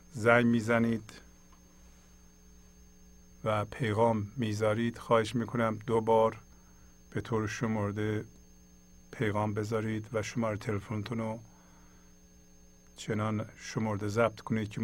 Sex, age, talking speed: male, 50-69, 90 wpm